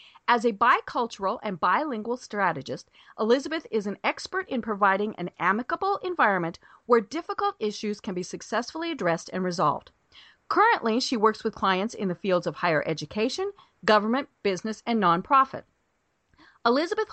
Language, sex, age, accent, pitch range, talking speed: English, female, 40-59, American, 195-260 Hz, 140 wpm